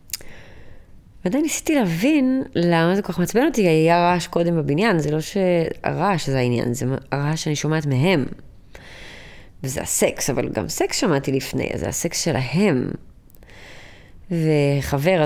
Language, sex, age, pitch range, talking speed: Hebrew, female, 20-39, 115-185 Hz, 135 wpm